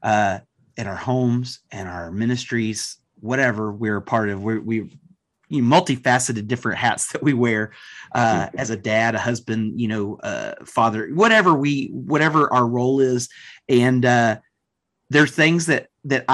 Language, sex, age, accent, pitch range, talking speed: English, male, 30-49, American, 120-145 Hz, 175 wpm